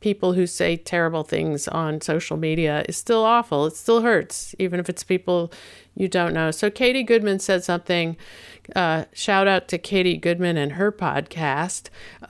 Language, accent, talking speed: English, American, 170 wpm